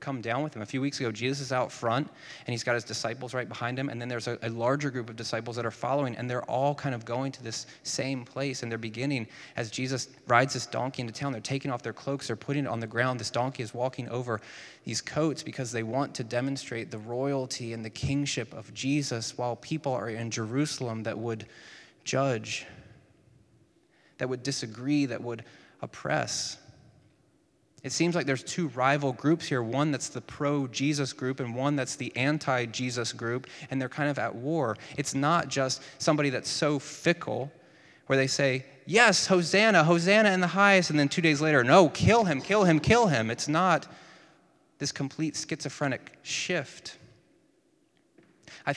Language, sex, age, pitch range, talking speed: English, male, 20-39, 120-145 Hz, 190 wpm